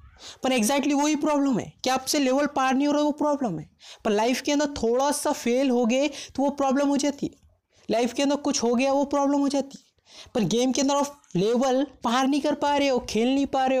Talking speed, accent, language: 250 wpm, native, Hindi